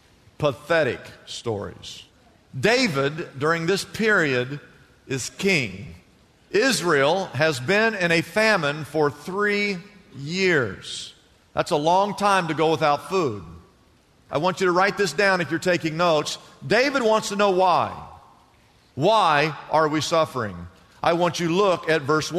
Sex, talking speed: male, 140 wpm